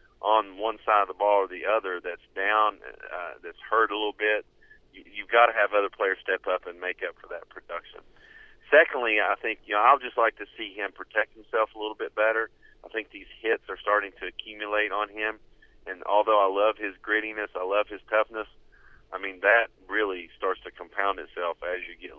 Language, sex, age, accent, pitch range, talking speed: English, male, 40-59, American, 100-110 Hz, 215 wpm